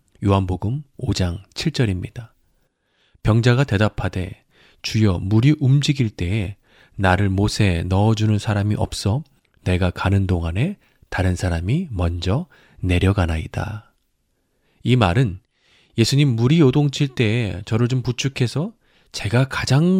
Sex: male